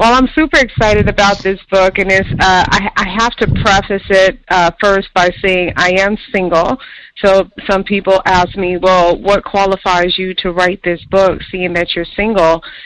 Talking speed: 180 wpm